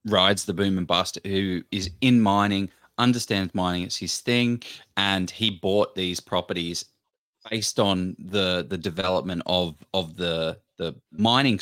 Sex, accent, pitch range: male, Australian, 90-120 Hz